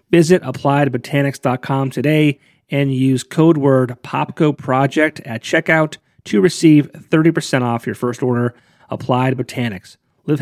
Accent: American